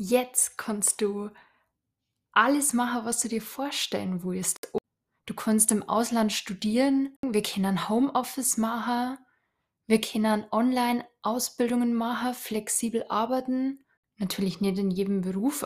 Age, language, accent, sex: 20-39, German, German, female